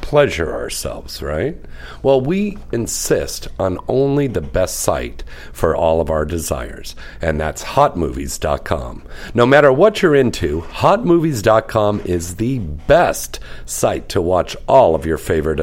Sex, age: male, 50-69